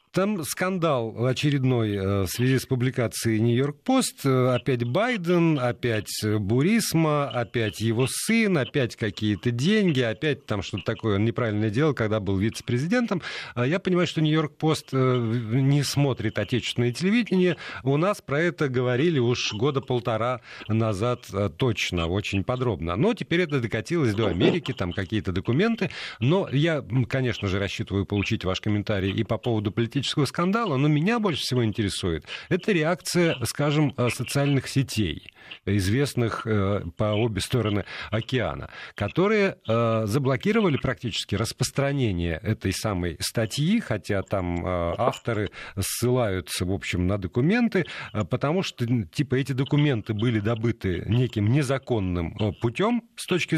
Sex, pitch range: male, 110-150 Hz